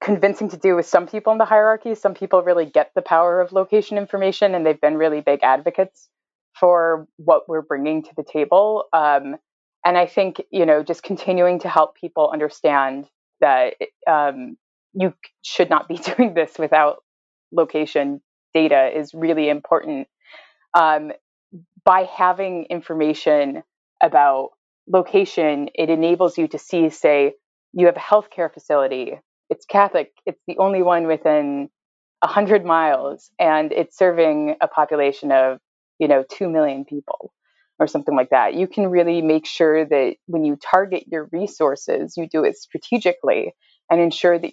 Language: English